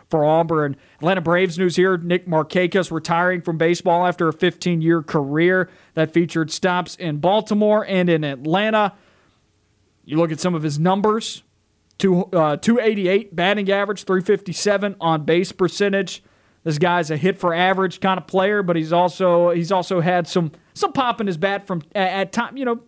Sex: male